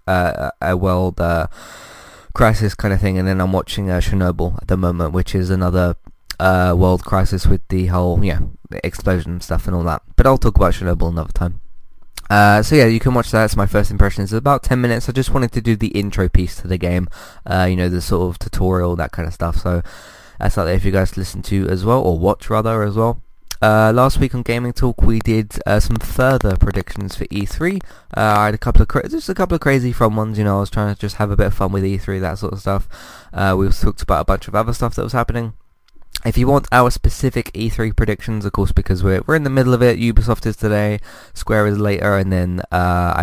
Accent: British